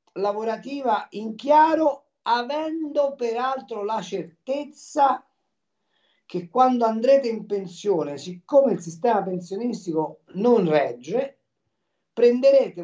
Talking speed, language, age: 90 wpm, Italian, 50-69